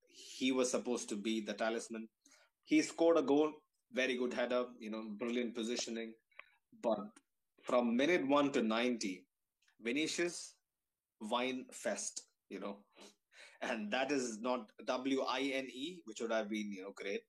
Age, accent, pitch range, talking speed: 20-39, Indian, 110-150 Hz, 140 wpm